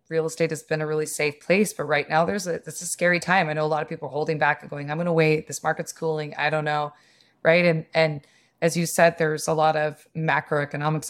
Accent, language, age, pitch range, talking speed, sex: American, English, 20-39, 150-165 Hz, 260 wpm, female